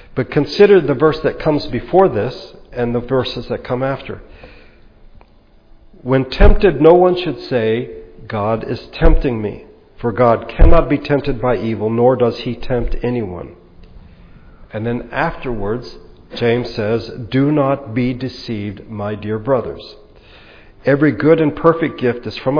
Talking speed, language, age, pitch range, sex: 145 wpm, English, 50-69, 110-145 Hz, male